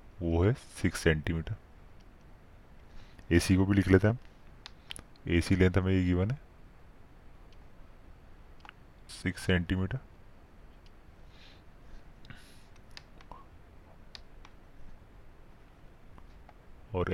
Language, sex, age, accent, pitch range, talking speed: Hindi, male, 30-49, native, 85-110 Hz, 75 wpm